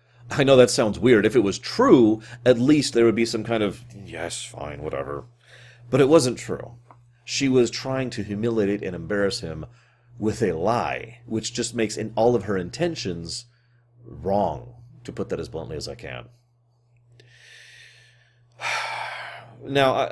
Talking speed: 155 wpm